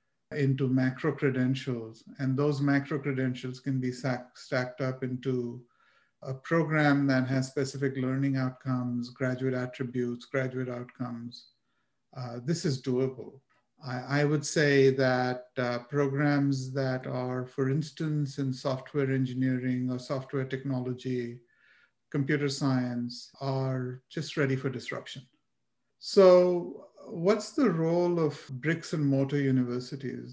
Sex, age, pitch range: male, 50-69, 130-150 Hz